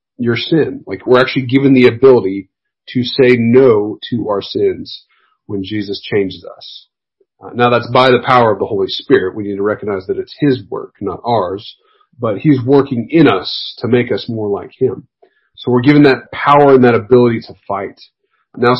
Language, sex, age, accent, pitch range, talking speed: English, male, 40-59, American, 105-135 Hz, 190 wpm